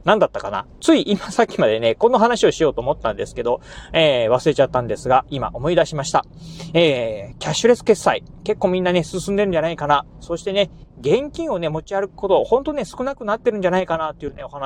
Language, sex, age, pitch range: Japanese, male, 30-49, 150-205 Hz